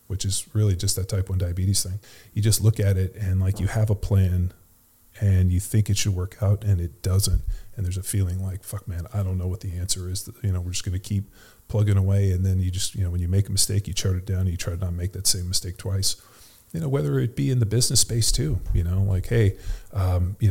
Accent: American